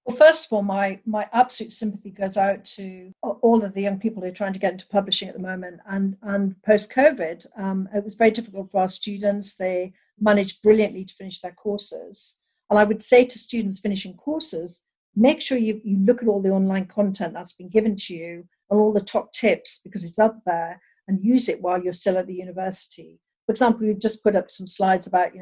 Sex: female